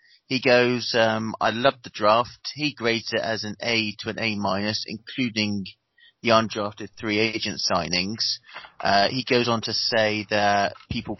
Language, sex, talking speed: English, male, 165 wpm